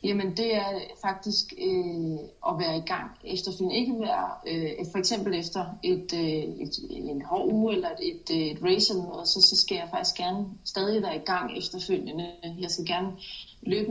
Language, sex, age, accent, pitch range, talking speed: Danish, female, 30-49, native, 165-195 Hz, 185 wpm